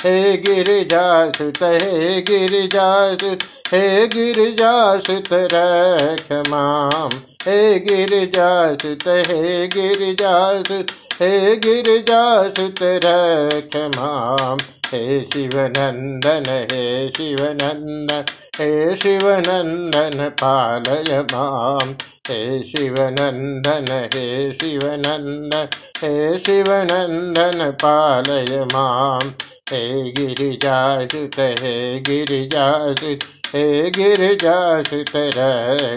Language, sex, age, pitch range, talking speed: Hindi, male, 50-69, 135-180 Hz, 70 wpm